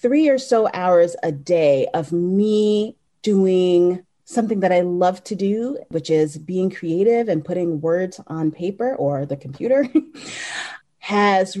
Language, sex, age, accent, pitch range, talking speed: English, female, 30-49, American, 160-220 Hz, 145 wpm